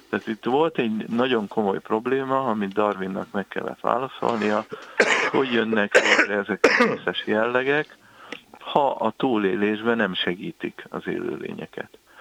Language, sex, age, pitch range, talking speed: Hungarian, male, 50-69, 95-110 Hz, 135 wpm